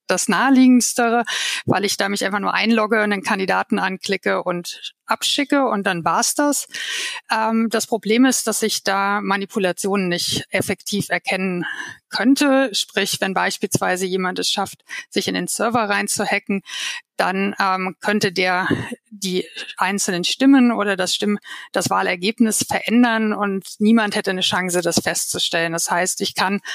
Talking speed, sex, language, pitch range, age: 145 wpm, female, German, 195-235 Hz, 50-69